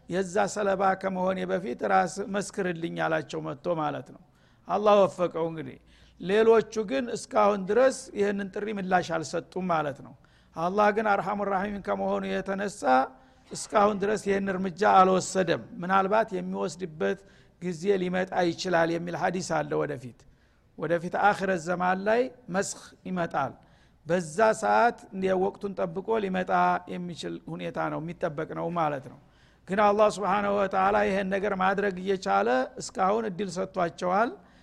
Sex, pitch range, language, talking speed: male, 175-210 Hz, Amharic, 115 wpm